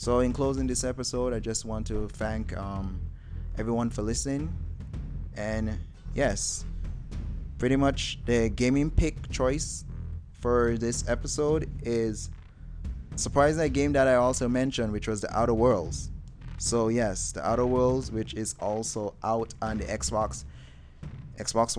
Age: 20-39